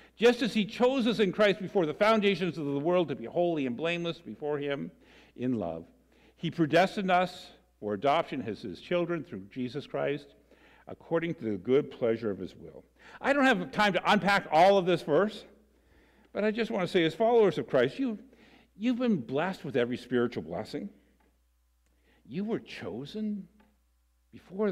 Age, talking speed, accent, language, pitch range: 60-79, 175 wpm, American, English, 110-175 Hz